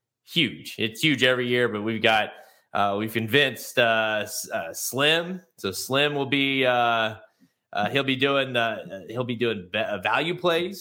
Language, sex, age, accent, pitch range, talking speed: English, male, 20-39, American, 110-135 Hz, 170 wpm